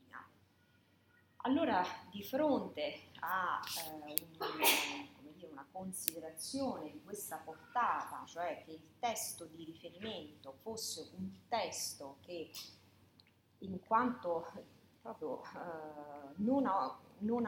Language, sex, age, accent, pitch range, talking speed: Italian, female, 40-59, native, 150-240 Hz, 100 wpm